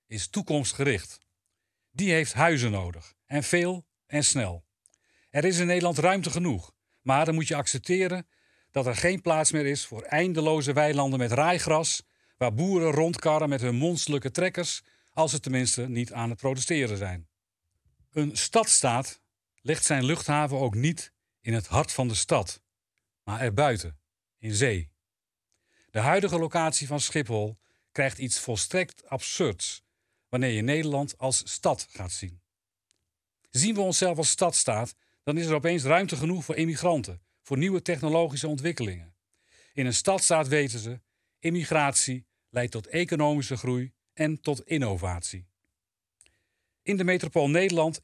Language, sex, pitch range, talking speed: Dutch, male, 110-160 Hz, 140 wpm